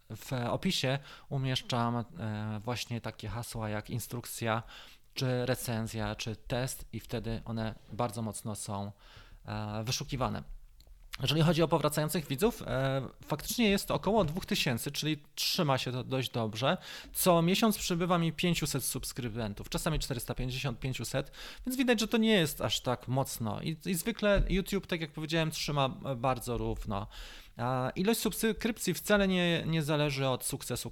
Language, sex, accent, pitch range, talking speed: Polish, male, native, 120-160 Hz, 135 wpm